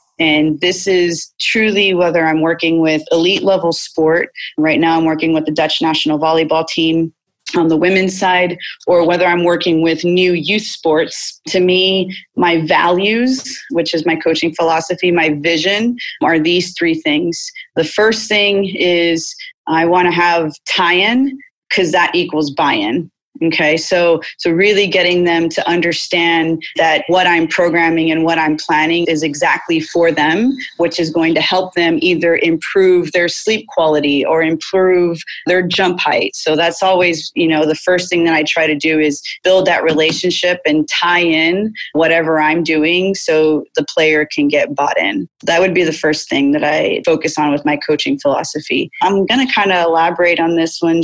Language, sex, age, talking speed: English, female, 30-49, 175 wpm